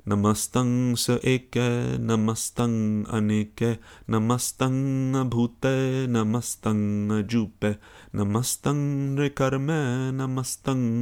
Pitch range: 105-125 Hz